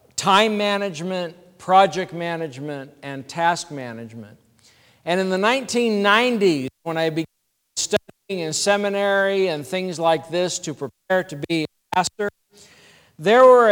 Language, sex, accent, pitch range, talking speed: English, male, American, 155-205 Hz, 125 wpm